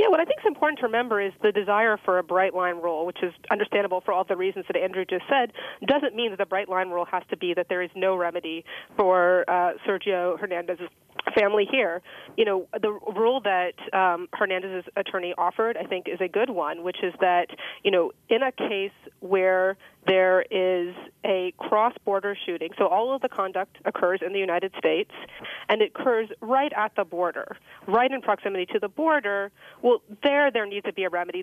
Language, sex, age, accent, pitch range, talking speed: English, female, 30-49, American, 185-225 Hz, 205 wpm